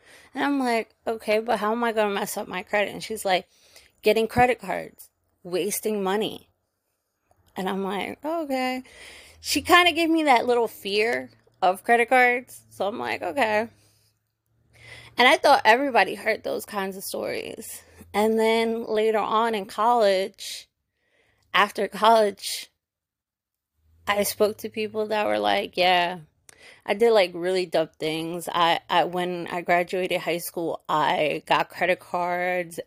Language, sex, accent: English, female, American